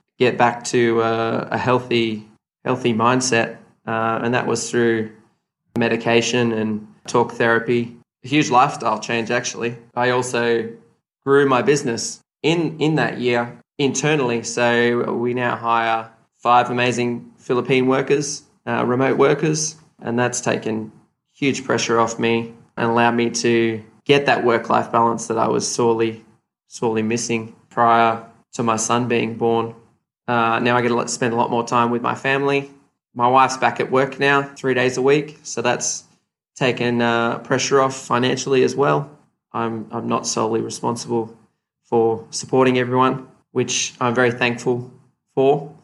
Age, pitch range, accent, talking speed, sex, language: 20-39, 115-130 Hz, Australian, 150 wpm, male, English